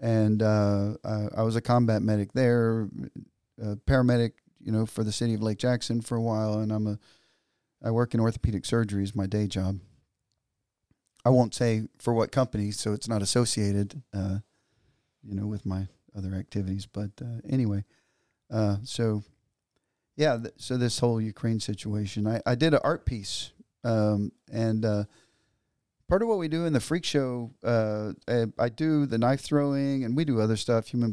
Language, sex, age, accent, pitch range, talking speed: English, male, 40-59, American, 105-125 Hz, 180 wpm